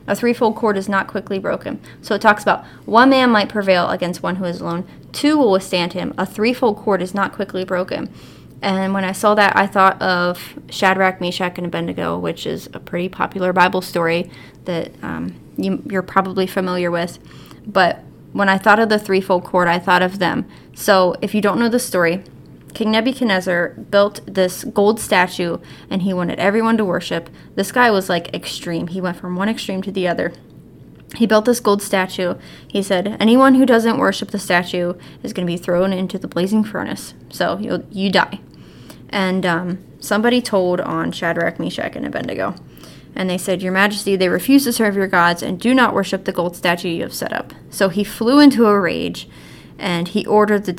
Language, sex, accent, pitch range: English, female, American, 180-210 Hz